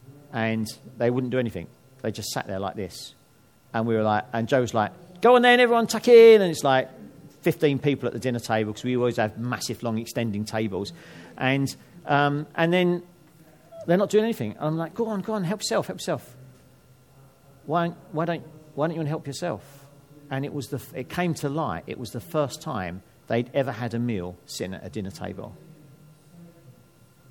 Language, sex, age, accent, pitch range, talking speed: English, male, 50-69, British, 120-160 Hz, 205 wpm